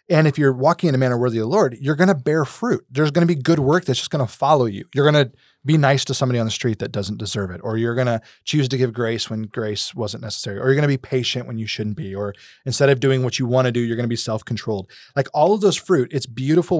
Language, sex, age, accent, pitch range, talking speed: English, male, 20-39, American, 105-135 Hz, 305 wpm